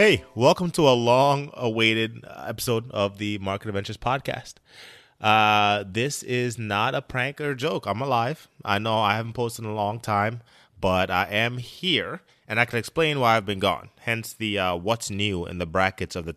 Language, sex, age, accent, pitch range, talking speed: English, male, 20-39, American, 95-115 Hz, 190 wpm